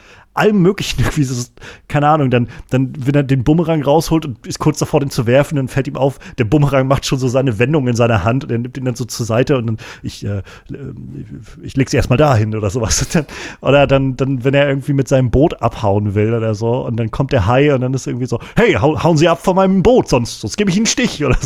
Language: German